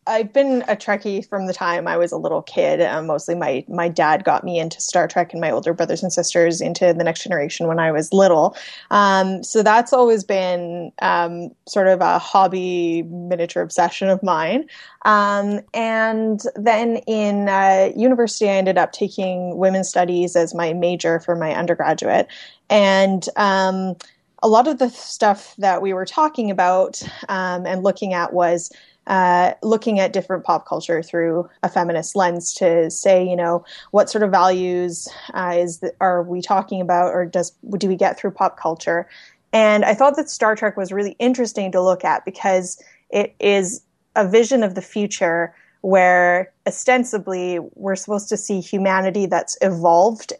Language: English